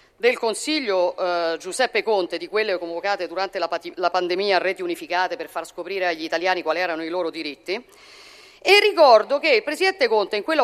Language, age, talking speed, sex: Italian, 50-69, 185 wpm, female